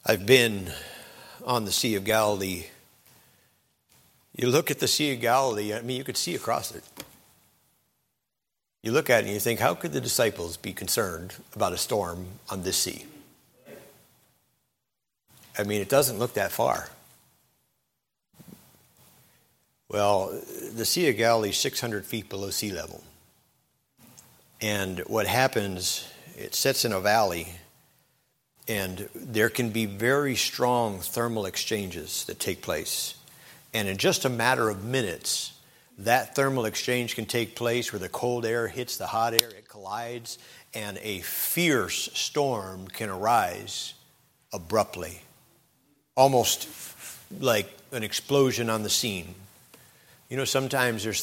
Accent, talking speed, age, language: American, 140 wpm, 50-69, English